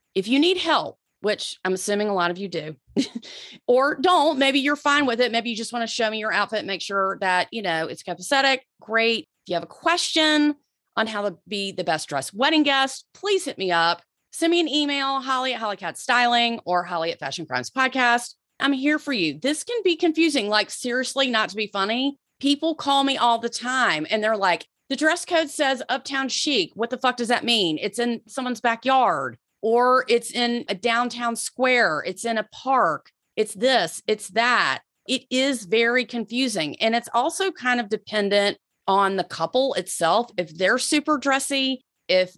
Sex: female